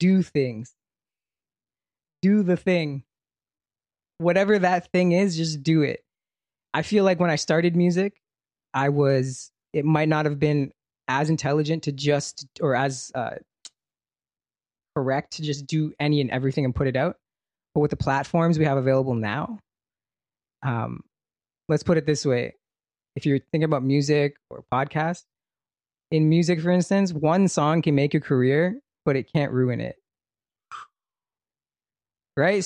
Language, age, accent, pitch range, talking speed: English, 20-39, American, 135-170 Hz, 150 wpm